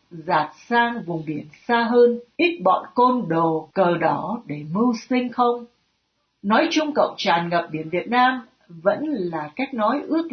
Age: 60-79